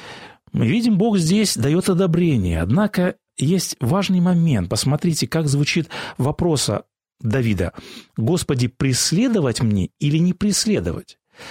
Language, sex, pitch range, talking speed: Russian, male, 130-180 Hz, 110 wpm